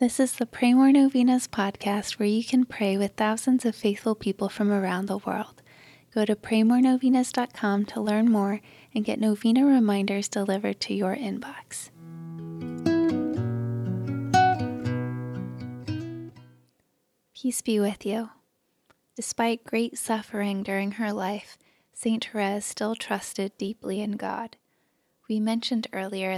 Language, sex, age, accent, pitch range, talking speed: English, female, 20-39, American, 195-225 Hz, 125 wpm